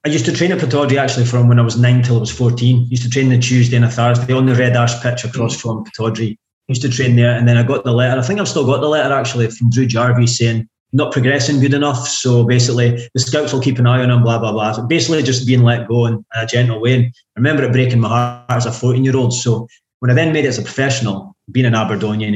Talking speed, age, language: 285 wpm, 20-39, English